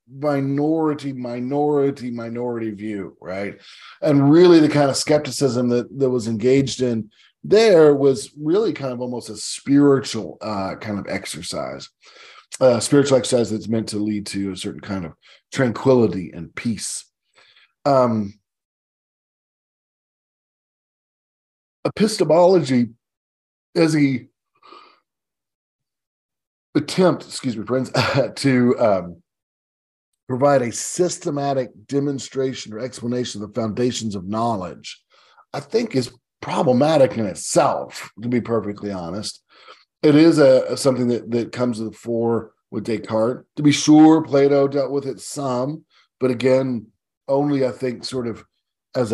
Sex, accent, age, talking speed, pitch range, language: male, American, 40-59, 130 wpm, 110-140 Hz, English